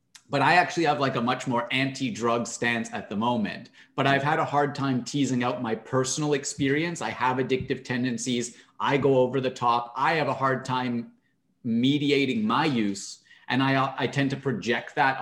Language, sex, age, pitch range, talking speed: English, male, 30-49, 125-145 Hz, 190 wpm